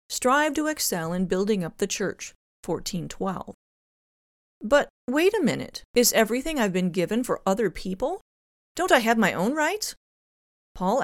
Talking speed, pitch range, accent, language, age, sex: 150 wpm, 180-230 Hz, American, English, 30-49, female